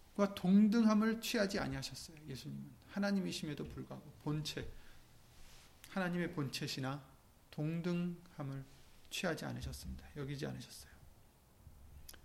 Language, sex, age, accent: Korean, male, 30-49, native